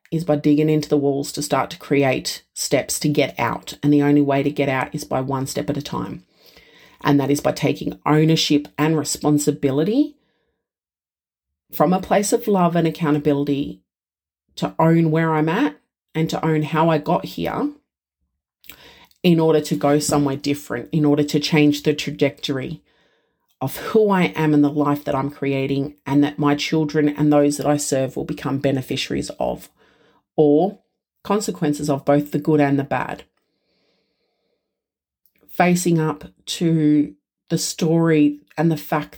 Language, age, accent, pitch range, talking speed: English, 40-59, Australian, 145-160 Hz, 165 wpm